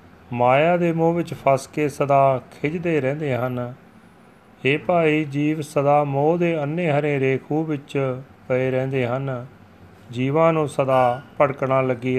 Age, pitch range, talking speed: 40-59, 125-150 Hz, 140 wpm